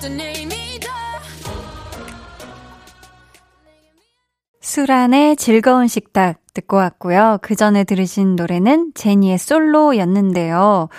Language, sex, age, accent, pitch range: Korean, female, 20-39, native, 195-255 Hz